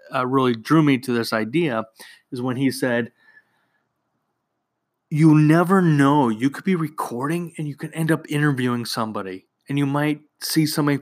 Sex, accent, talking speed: male, American, 165 wpm